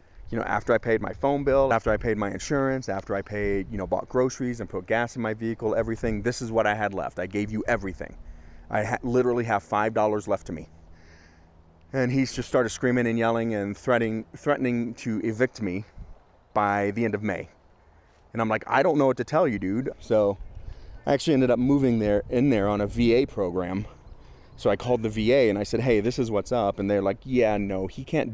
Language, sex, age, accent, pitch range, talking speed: English, male, 30-49, American, 100-125 Hz, 225 wpm